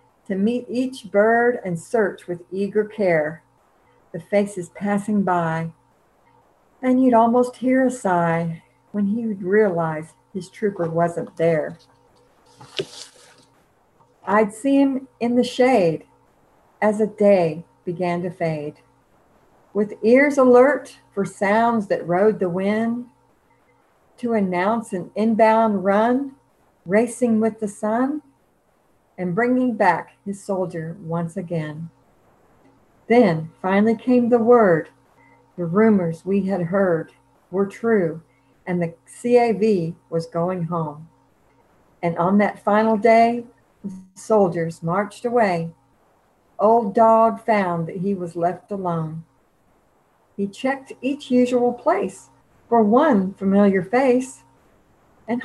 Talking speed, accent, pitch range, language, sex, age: 115 wpm, American, 175-230 Hz, English, female, 60-79